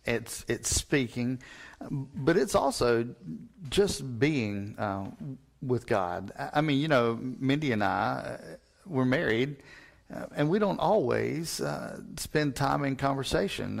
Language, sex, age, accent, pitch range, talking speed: English, male, 40-59, American, 110-135 Hz, 135 wpm